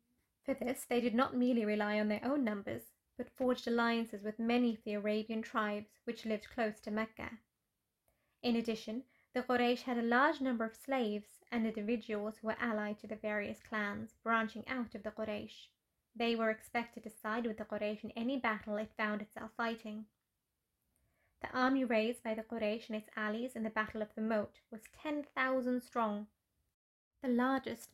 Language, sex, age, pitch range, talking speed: English, female, 20-39, 215-245 Hz, 180 wpm